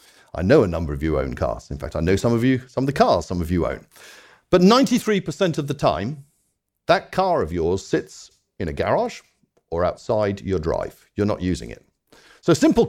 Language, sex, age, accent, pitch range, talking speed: English, male, 50-69, British, 100-165 Hz, 220 wpm